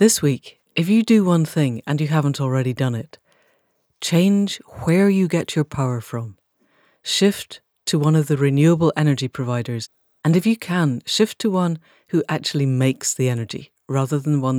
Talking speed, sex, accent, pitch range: 175 wpm, female, British, 130-165 Hz